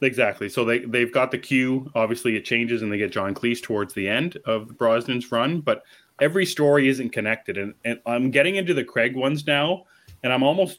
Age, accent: 30-49, American